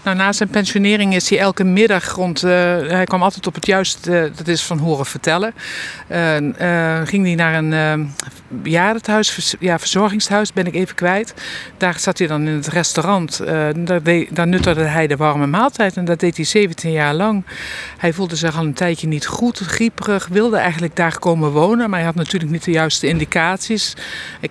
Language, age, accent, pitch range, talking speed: Dutch, 50-69, Dutch, 160-190 Hz, 200 wpm